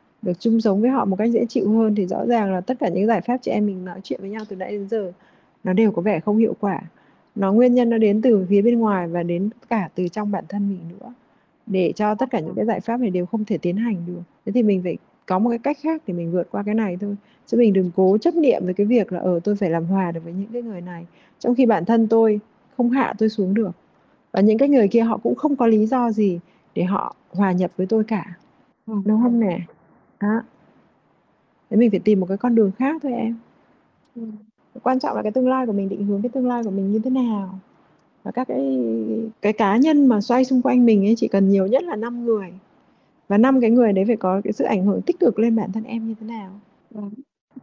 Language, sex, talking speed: Vietnamese, female, 265 wpm